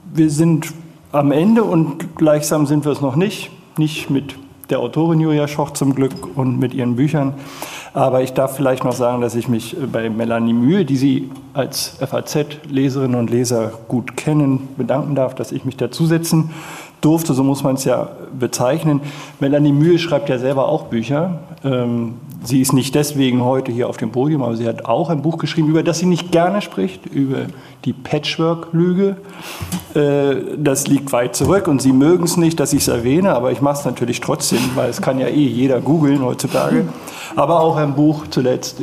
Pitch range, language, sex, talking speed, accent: 125-155 Hz, German, male, 185 wpm, German